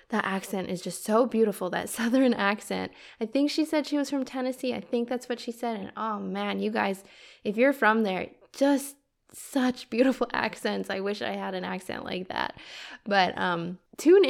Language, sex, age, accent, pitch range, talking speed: English, female, 10-29, American, 195-255 Hz, 195 wpm